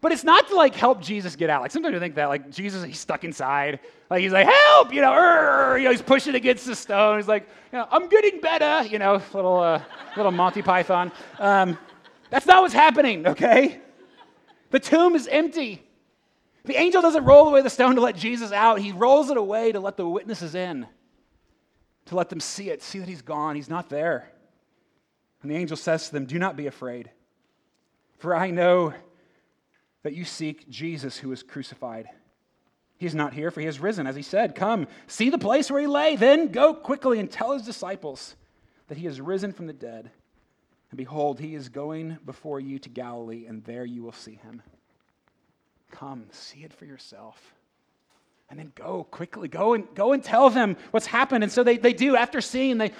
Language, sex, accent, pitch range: English, male, American, 155-260 Hz